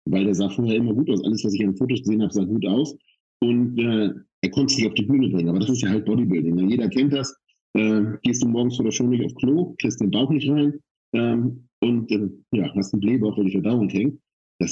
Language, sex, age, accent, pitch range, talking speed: English, male, 50-69, German, 95-120 Hz, 255 wpm